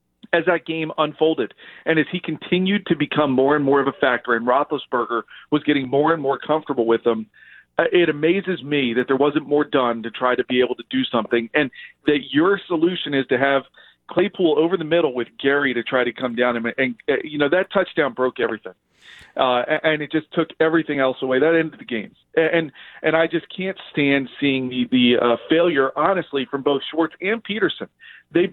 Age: 40-59